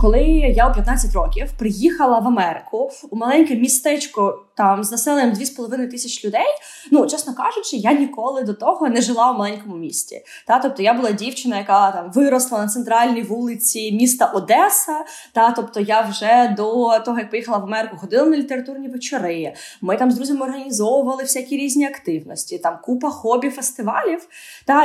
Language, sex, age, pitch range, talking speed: Ukrainian, female, 20-39, 225-285 Hz, 165 wpm